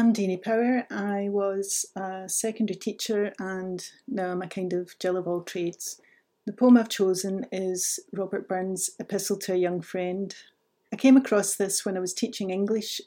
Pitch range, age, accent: 185-215 Hz, 40-59, British